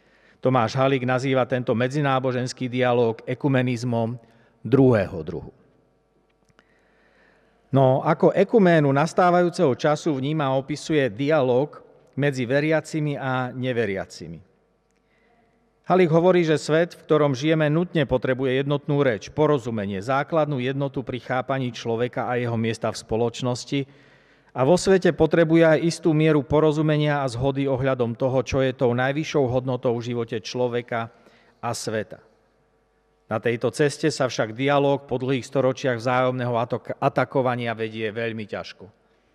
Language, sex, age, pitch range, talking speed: Slovak, male, 50-69, 120-150 Hz, 120 wpm